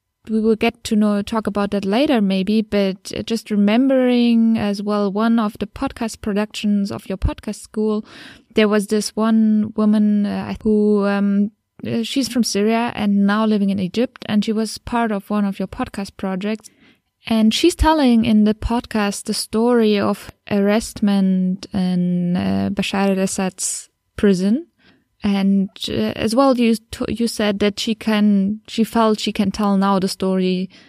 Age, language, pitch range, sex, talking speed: 20-39, German, 195-220 Hz, female, 160 wpm